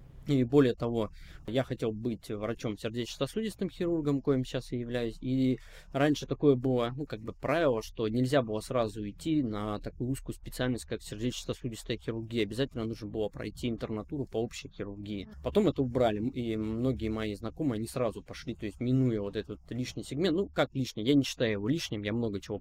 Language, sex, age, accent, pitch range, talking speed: Russian, male, 20-39, native, 110-140 Hz, 180 wpm